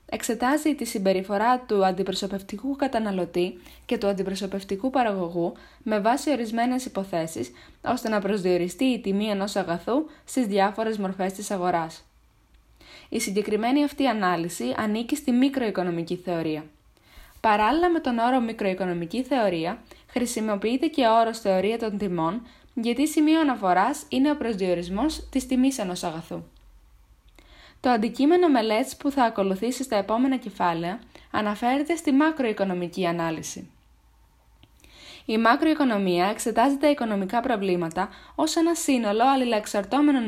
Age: 20-39